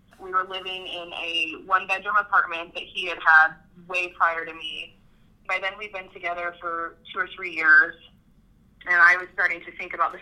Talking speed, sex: 195 wpm, female